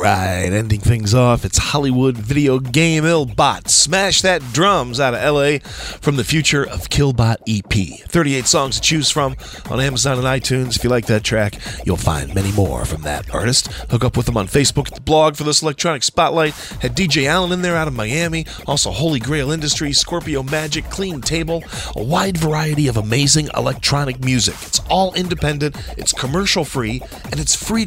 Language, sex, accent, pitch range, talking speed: English, male, American, 115-160 Hz, 190 wpm